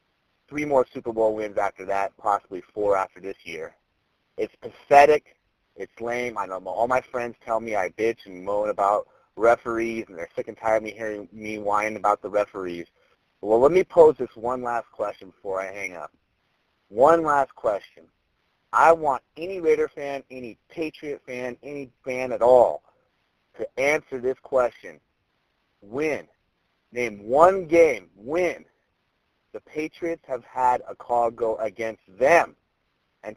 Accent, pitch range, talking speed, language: American, 110-140 Hz, 160 wpm, English